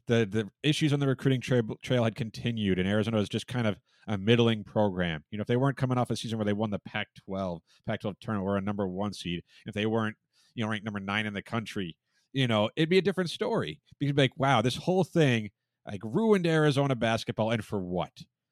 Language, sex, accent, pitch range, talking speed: English, male, American, 105-140 Hz, 240 wpm